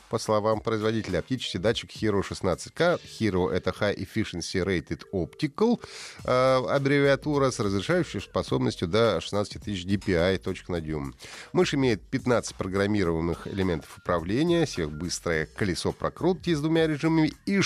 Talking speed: 135 wpm